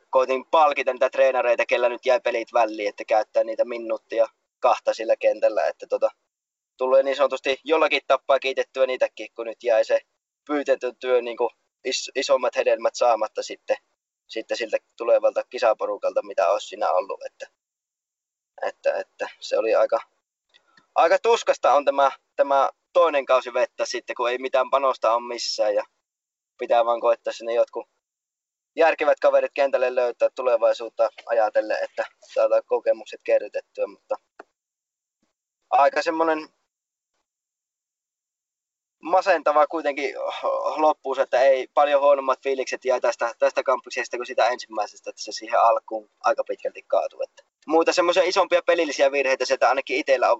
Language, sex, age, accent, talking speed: Finnish, male, 20-39, native, 135 wpm